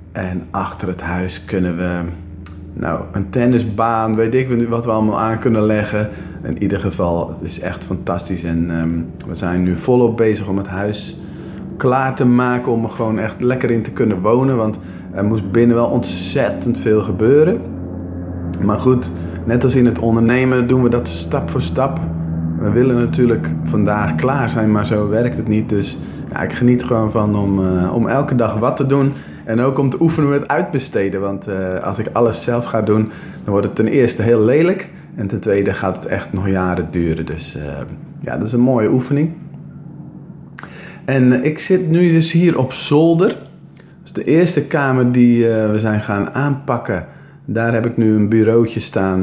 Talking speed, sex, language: 195 wpm, male, Dutch